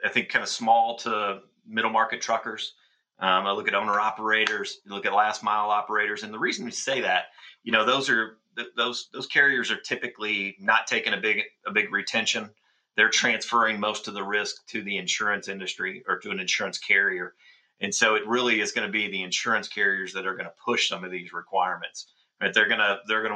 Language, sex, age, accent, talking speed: English, male, 30-49, American, 215 wpm